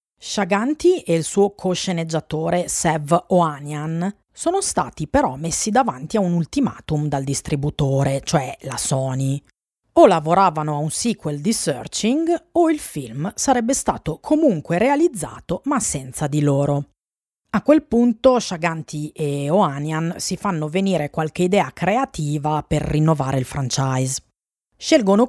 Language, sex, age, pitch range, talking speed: Italian, female, 30-49, 150-220 Hz, 130 wpm